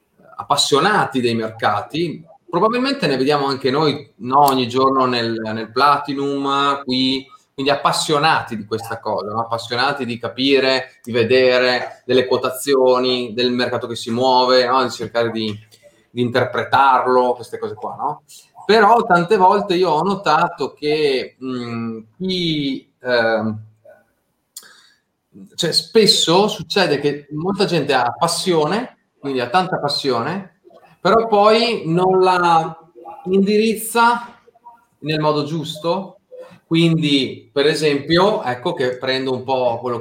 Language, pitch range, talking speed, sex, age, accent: Italian, 125-165 Hz, 125 wpm, male, 30-49, native